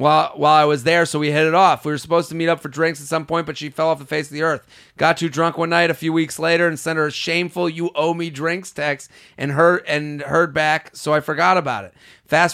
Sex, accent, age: male, American, 30-49